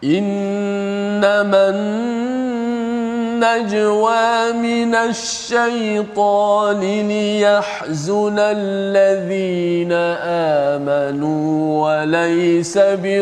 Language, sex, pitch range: Malayalam, male, 195-210 Hz